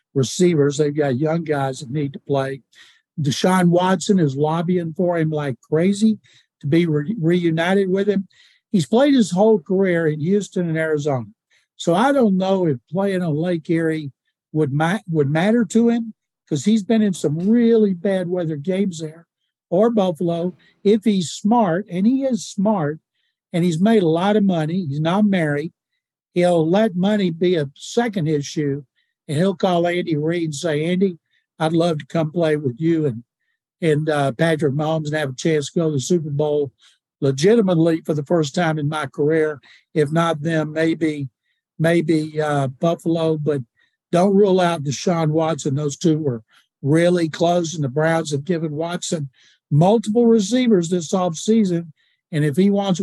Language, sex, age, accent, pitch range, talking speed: English, male, 60-79, American, 150-190 Hz, 170 wpm